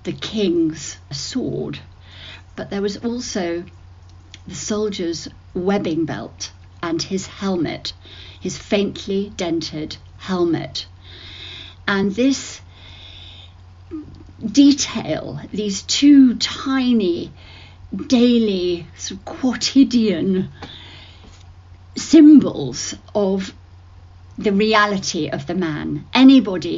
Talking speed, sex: 80 wpm, female